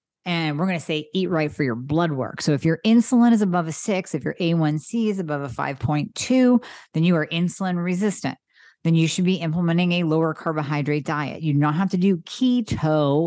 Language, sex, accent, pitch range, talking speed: English, female, American, 150-185 Hz, 215 wpm